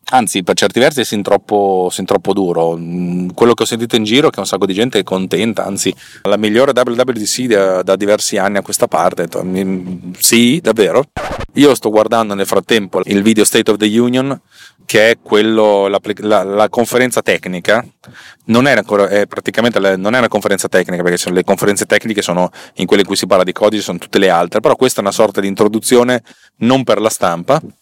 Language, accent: Italian, native